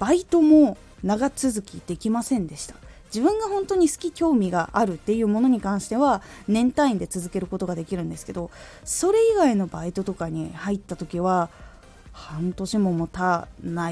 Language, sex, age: Japanese, female, 20-39